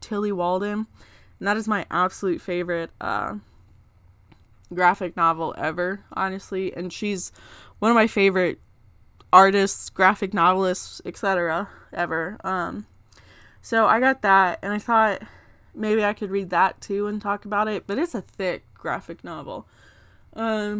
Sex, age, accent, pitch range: female, 20-39, American, 160-220 Hz